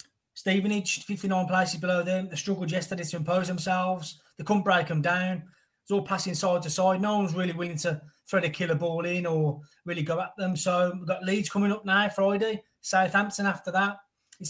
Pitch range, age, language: 165-195 Hz, 20-39, English